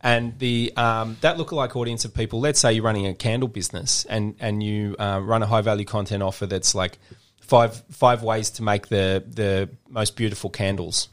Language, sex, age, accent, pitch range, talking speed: English, male, 30-49, Australian, 100-120 Hz, 195 wpm